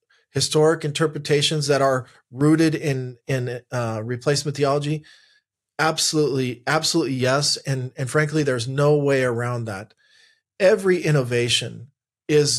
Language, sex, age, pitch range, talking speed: English, male, 40-59, 120-150 Hz, 115 wpm